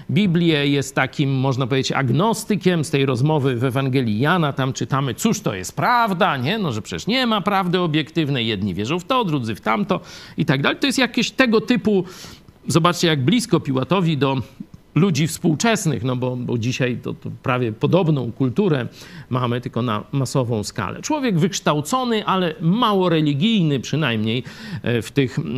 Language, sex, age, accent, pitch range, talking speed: Polish, male, 50-69, native, 120-170 Hz, 160 wpm